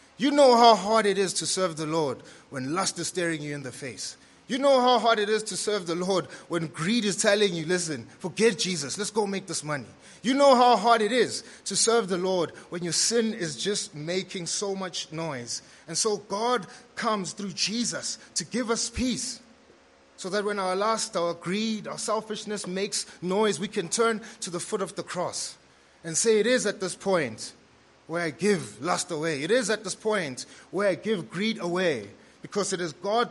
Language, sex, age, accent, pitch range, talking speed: English, male, 30-49, South African, 160-215 Hz, 210 wpm